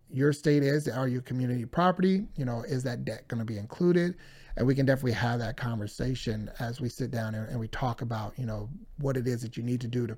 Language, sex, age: English, male, 30-49